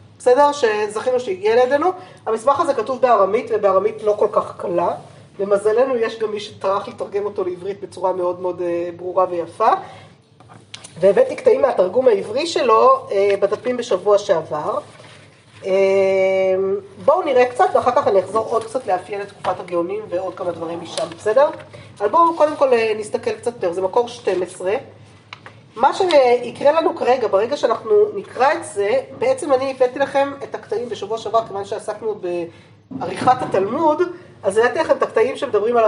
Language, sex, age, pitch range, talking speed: Hebrew, female, 30-49, 185-290 Hz, 150 wpm